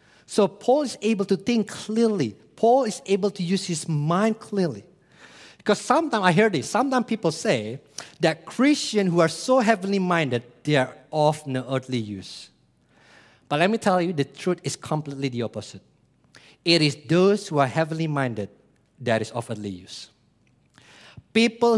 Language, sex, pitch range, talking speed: English, male, 135-205 Hz, 165 wpm